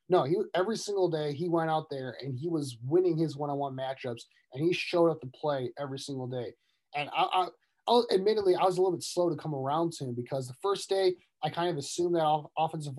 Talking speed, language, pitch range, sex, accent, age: 235 wpm, English, 140-175 Hz, male, American, 30-49